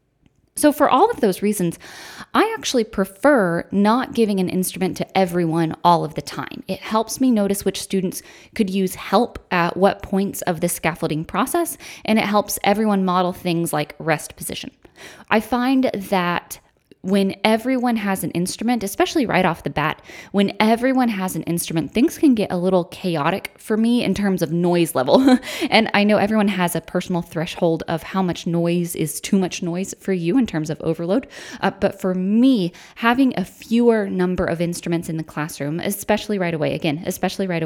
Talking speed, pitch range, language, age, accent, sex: 185 wpm, 170-225 Hz, English, 10-29, American, female